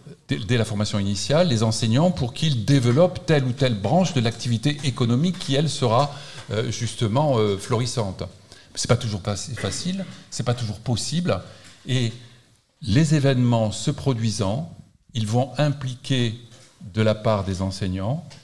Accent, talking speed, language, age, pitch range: French, 145 wpm, French, 50-69, 105-135 Hz